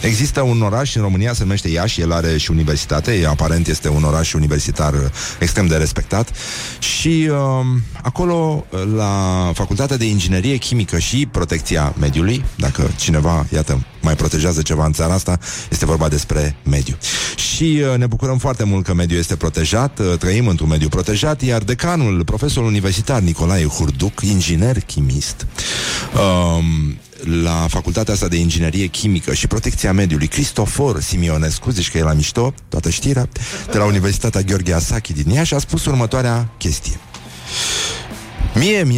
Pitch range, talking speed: 80-120 Hz, 150 wpm